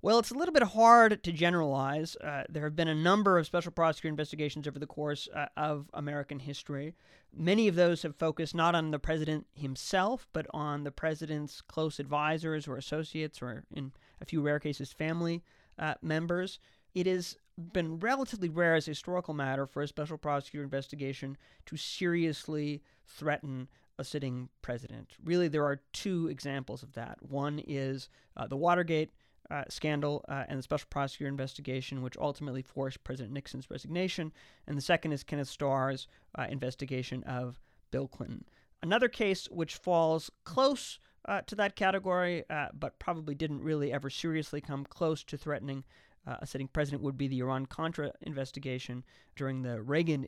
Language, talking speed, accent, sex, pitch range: English, 170 wpm, American, male, 135-170 Hz